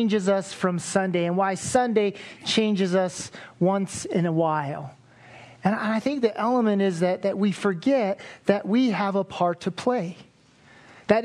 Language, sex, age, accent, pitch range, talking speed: English, male, 40-59, American, 170-230 Hz, 165 wpm